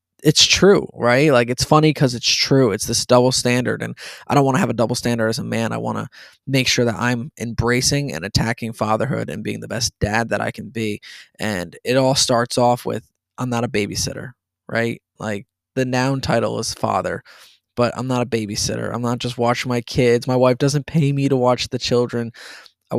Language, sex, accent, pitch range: English, male, American, 110-130 Hz